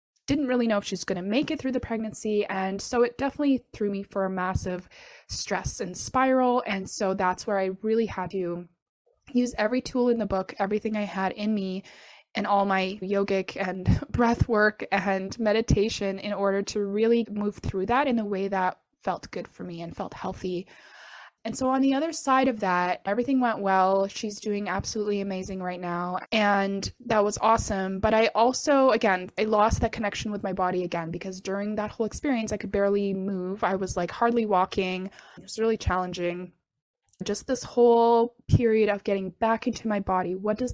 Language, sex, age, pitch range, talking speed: English, female, 20-39, 190-230 Hz, 195 wpm